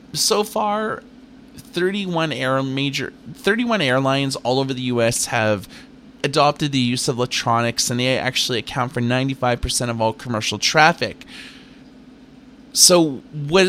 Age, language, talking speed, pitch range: 30-49, English, 130 wpm, 115-150 Hz